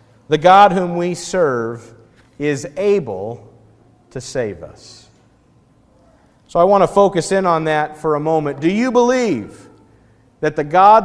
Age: 50-69